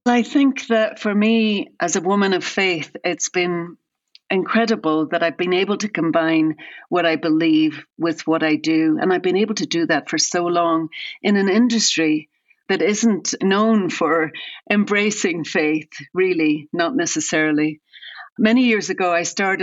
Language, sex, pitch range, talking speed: English, female, 165-200 Hz, 160 wpm